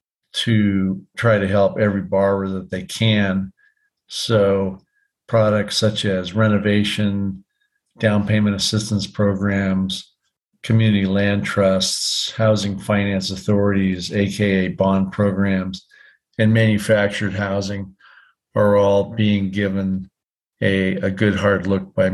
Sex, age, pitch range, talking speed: male, 50-69, 95-105 Hz, 110 wpm